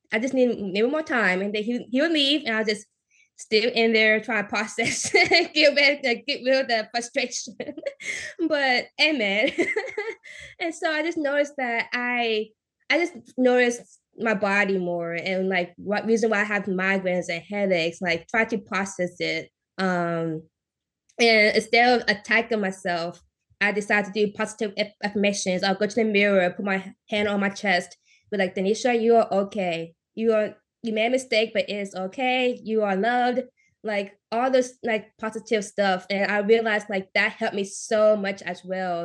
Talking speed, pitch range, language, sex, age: 180 wpm, 195-235 Hz, English, female, 20-39